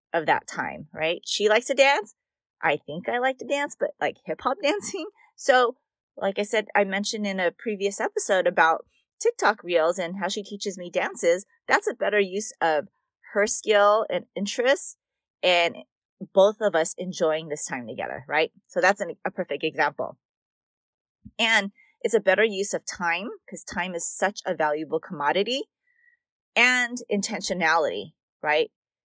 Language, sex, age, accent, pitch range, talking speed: English, female, 30-49, American, 175-245 Hz, 165 wpm